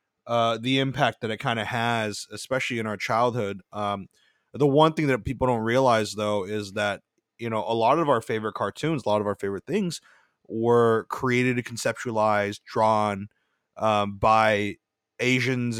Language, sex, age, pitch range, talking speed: English, male, 30-49, 110-130 Hz, 165 wpm